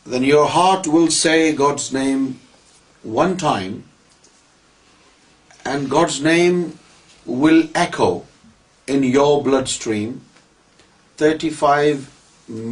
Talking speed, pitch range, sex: 85 wpm, 130-165 Hz, male